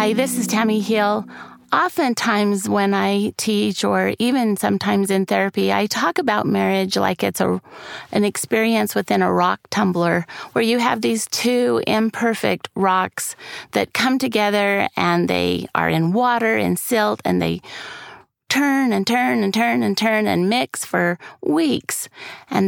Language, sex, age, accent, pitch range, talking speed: English, female, 30-49, American, 170-235 Hz, 155 wpm